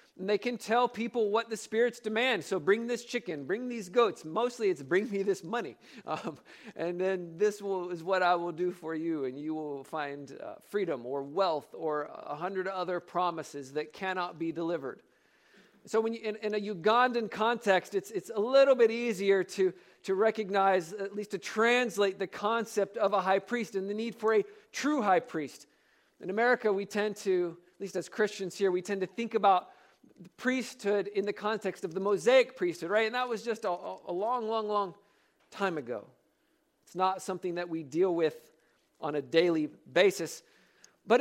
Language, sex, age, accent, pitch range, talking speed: English, male, 50-69, American, 170-225 Hz, 195 wpm